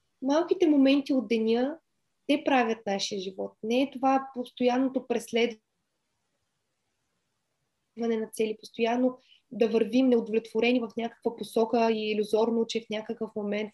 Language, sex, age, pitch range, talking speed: Bulgarian, female, 20-39, 205-250 Hz, 120 wpm